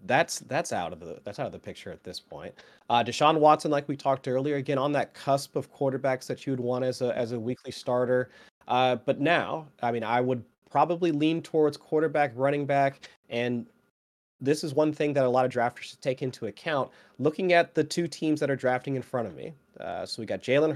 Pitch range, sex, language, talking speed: 120-145 Hz, male, English, 230 wpm